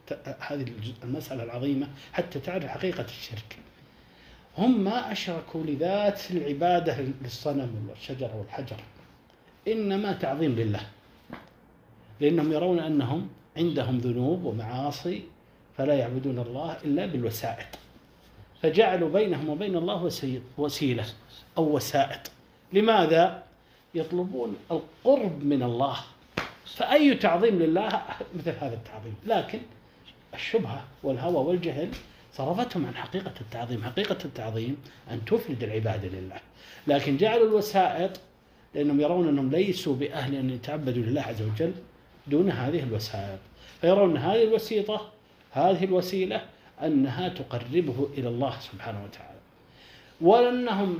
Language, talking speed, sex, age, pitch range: Arabic, 105 wpm, male, 50-69, 130-185 Hz